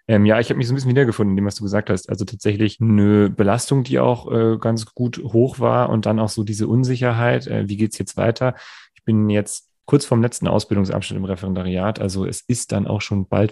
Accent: German